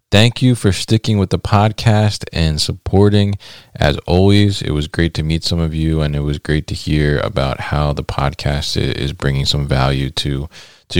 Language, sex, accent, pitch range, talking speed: English, male, American, 75-100 Hz, 190 wpm